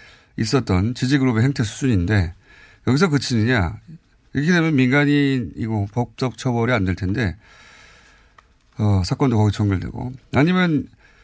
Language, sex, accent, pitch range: Korean, male, native, 105-155 Hz